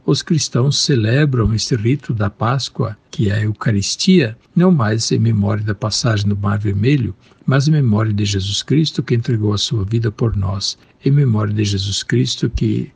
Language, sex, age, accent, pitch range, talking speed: Portuguese, male, 60-79, Brazilian, 105-135 Hz, 180 wpm